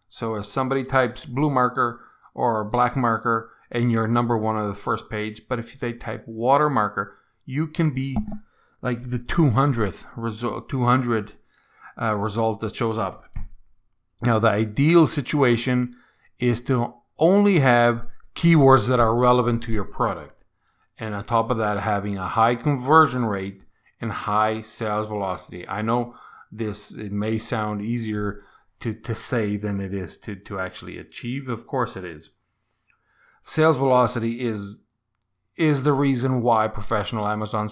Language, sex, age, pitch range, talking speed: English, male, 40-59, 105-125 Hz, 150 wpm